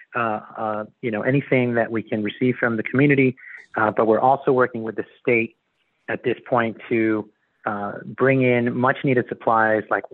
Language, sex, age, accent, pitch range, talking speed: English, male, 30-49, American, 110-130 Hz, 185 wpm